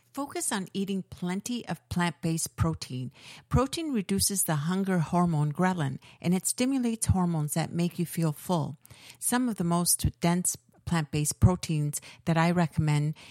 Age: 50-69